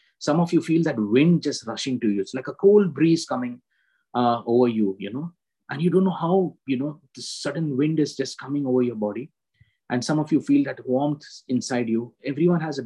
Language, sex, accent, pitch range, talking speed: English, male, Indian, 125-155 Hz, 230 wpm